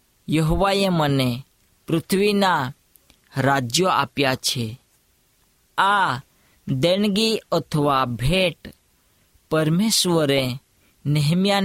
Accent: native